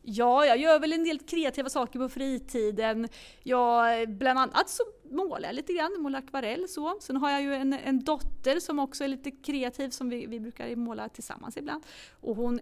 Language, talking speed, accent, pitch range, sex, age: Swedish, 200 wpm, native, 240-310 Hz, female, 30-49